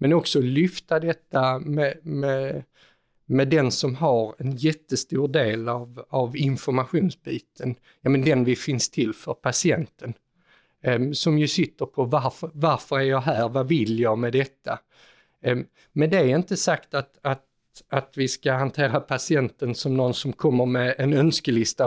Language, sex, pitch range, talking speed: Swedish, male, 130-155 Hz, 145 wpm